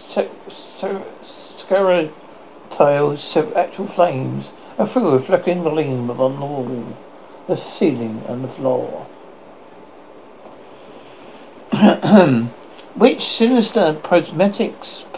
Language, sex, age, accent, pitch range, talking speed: English, male, 60-79, British, 140-230 Hz, 85 wpm